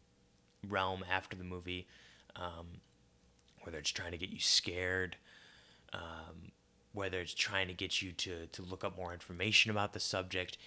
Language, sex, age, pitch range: English, male, 20-39, 90-110 Hz